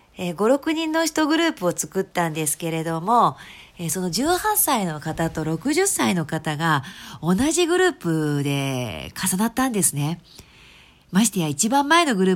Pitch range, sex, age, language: 165-240 Hz, female, 40-59, Japanese